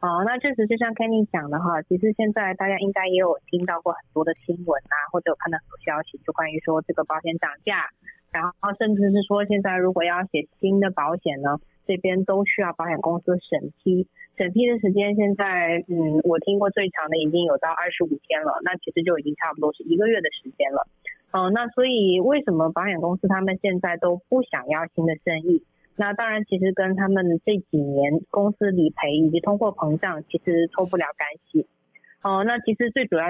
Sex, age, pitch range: female, 30-49, 165-205 Hz